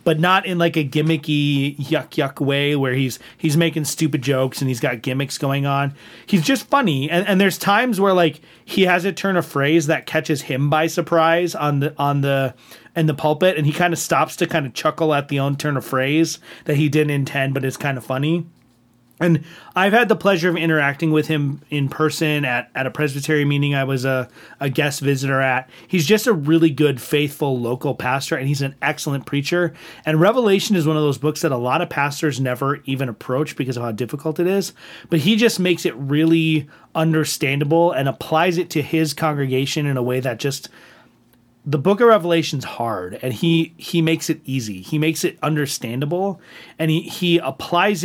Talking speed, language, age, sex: 205 wpm, English, 30-49, male